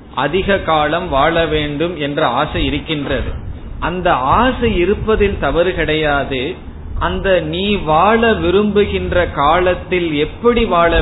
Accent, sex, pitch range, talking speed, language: native, male, 140-180 Hz, 105 wpm, Tamil